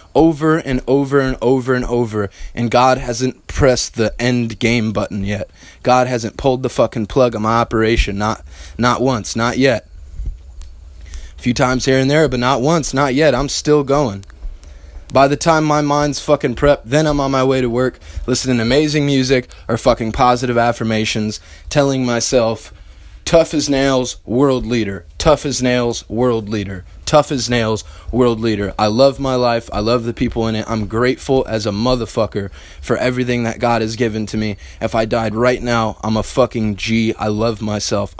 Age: 20-39